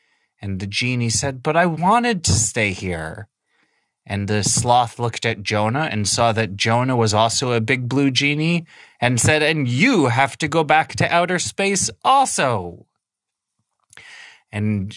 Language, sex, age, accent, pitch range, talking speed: English, male, 30-49, American, 105-145 Hz, 155 wpm